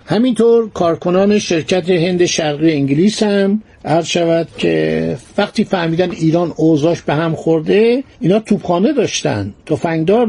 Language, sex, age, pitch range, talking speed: Persian, male, 60-79, 145-195 Hz, 120 wpm